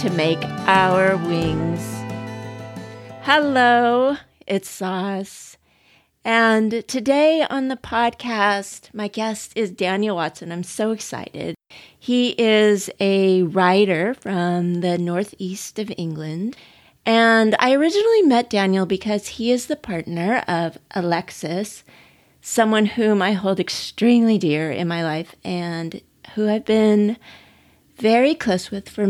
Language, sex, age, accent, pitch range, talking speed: English, female, 30-49, American, 175-220 Hz, 120 wpm